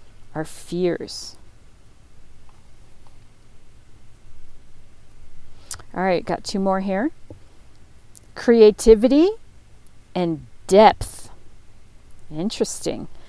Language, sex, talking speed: English, female, 50 wpm